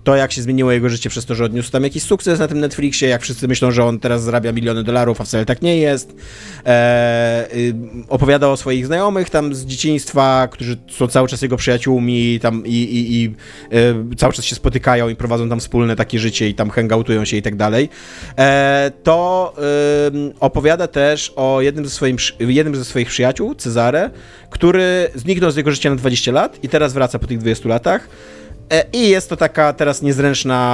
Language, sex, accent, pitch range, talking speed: Polish, male, native, 120-150 Hz, 185 wpm